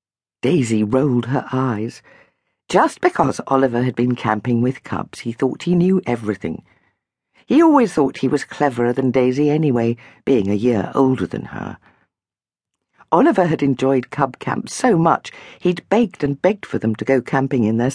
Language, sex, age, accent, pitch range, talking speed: English, female, 50-69, British, 115-155 Hz, 165 wpm